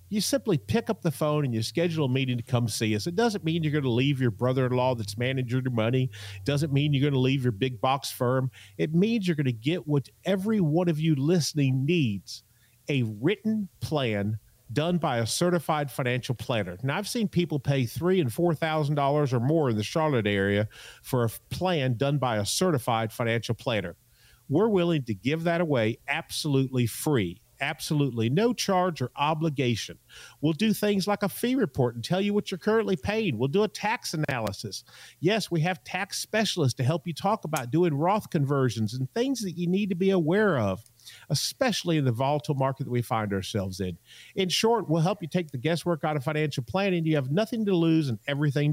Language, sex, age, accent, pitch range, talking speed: English, male, 40-59, American, 120-175 Hz, 205 wpm